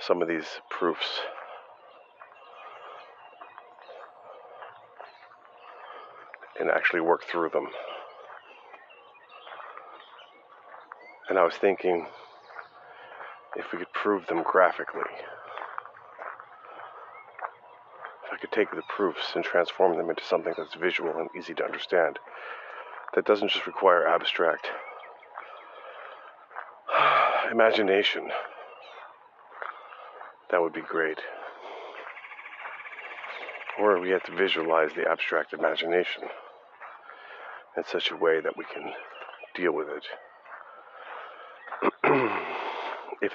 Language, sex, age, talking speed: English, male, 40-59, 90 wpm